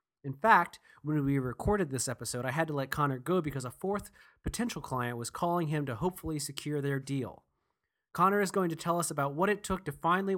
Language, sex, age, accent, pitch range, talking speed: English, male, 30-49, American, 130-175 Hz, 220 wpm